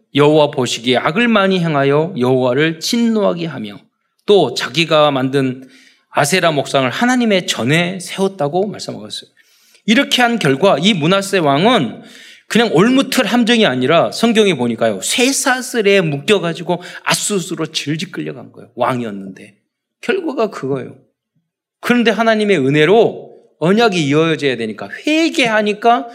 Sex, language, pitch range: male, Korean, 135-215 Hz